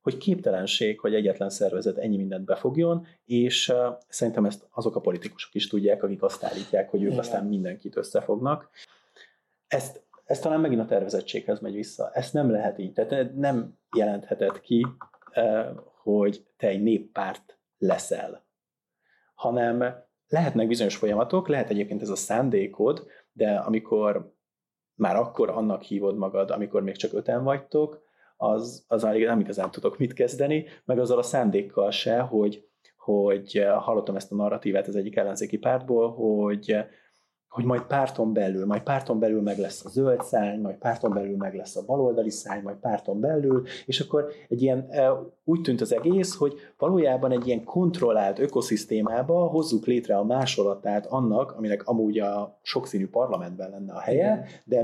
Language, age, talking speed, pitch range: Hungarian, 30-49, 150 wpm, 105-140 Hz